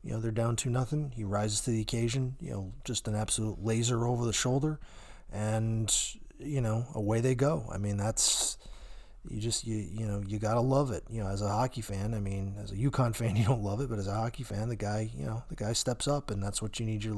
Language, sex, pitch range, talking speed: English, male, 105-120 Hz, 255 wpm